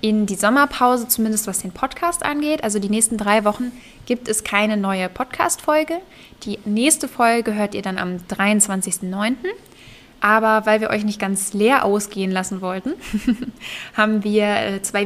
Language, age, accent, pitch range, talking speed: German, 20-39, German, 195-230 Hz, 155 wpm